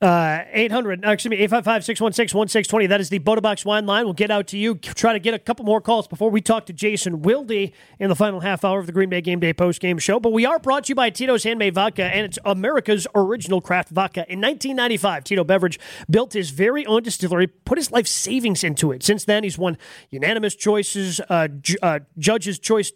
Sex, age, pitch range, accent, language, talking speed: male, 30-49, 180-220 Hz, American, English, 235 wpm